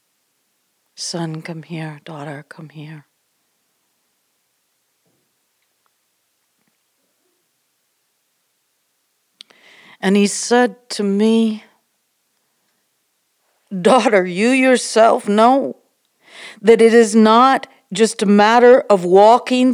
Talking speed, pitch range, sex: 75 wpm, 190-245 Hz, female